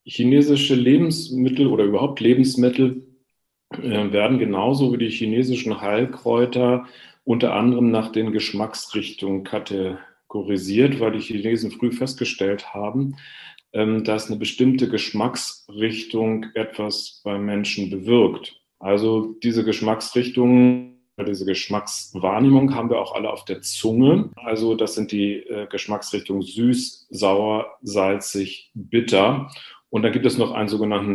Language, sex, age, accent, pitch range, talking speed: German, male, 40-59, German, 105-130 Hz, 115 wpm